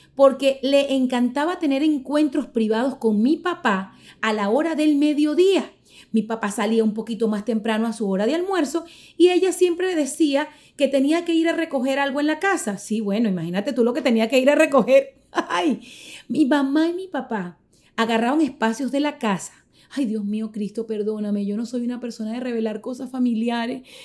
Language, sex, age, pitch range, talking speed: Spanish, female, 30-49, 220-285 Hz, 190 wpm